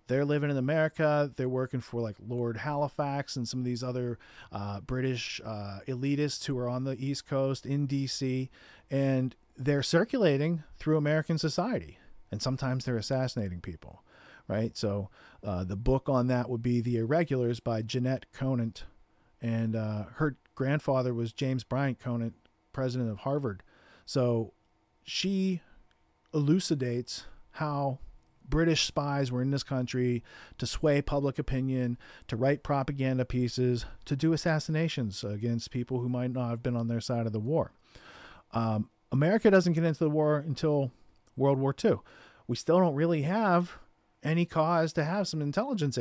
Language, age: English, 40-59